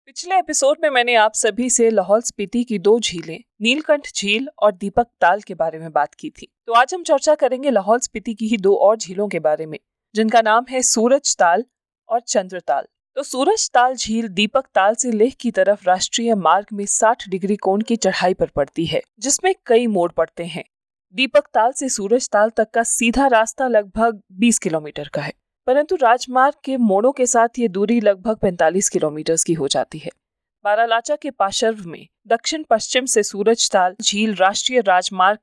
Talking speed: 190 wpm